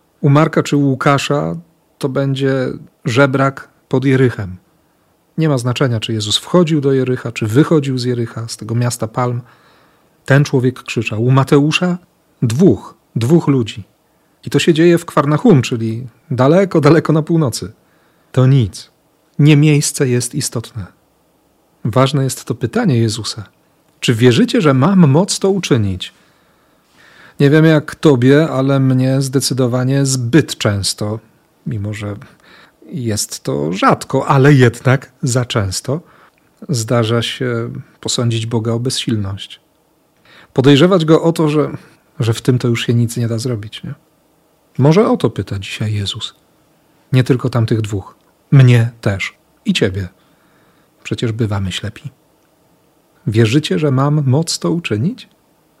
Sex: male